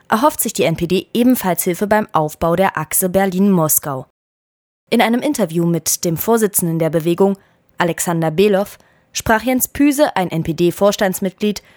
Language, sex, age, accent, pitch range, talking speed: German, female, 20-39, German, 170-225 Hz, 135 wpm